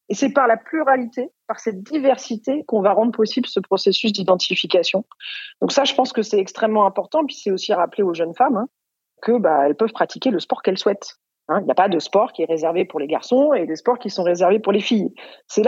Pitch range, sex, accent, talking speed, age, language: 185-240 Hz, female, French, 240 wpm, 40-59, French